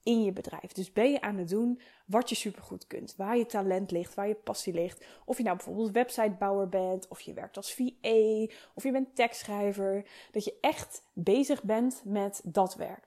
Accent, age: Dutch, 20-39